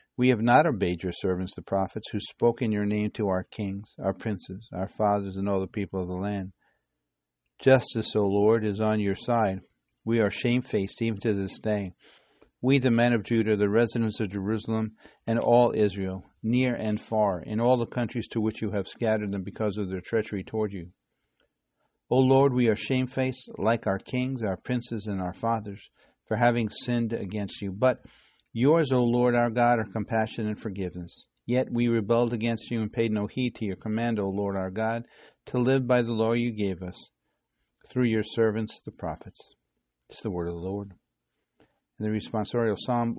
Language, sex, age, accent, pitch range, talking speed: English, male, 50-69, American, 100-120 Hz, 195 wpm